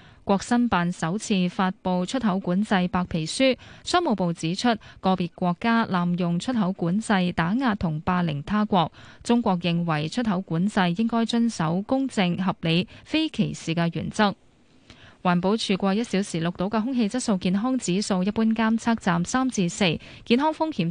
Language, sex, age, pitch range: Chinese, female, 10-29, 175-235 Hz